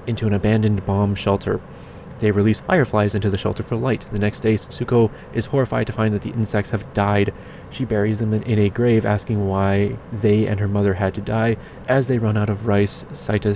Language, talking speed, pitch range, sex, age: English, 215 wpm, 100-115 Hz, male, 20-39